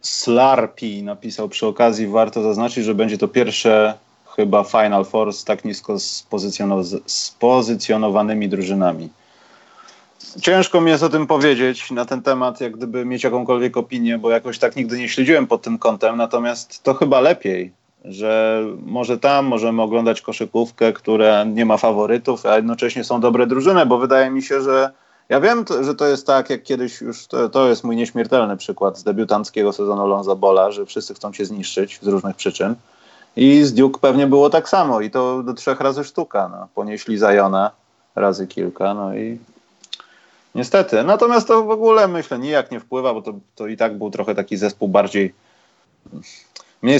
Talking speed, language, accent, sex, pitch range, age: 170 wpm, Polish, native, male, 105-130 Hz, 30-49